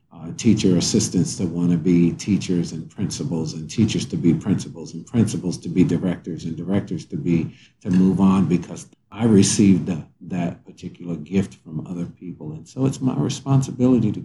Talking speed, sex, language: 180 wpm, male, English